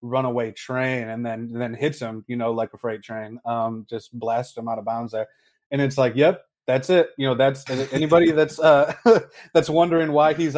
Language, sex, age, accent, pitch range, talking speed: English, male, 20-39, American, 120-150 Hz, 215 wpm